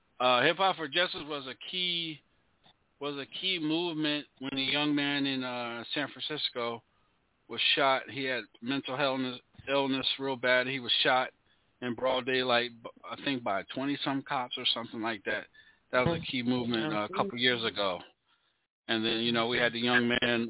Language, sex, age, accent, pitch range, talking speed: English, male, 40-59, American, 120-145 Hz, 190 wpm